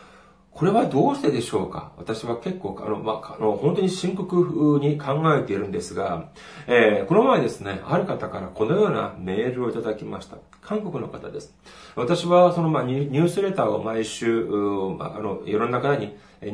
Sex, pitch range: male, 115-175 Hz